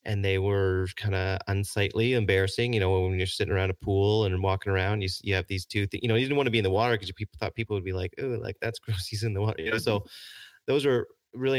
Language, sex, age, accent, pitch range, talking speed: English, male, 30-49, American, 95-110 Hz, 290 wpm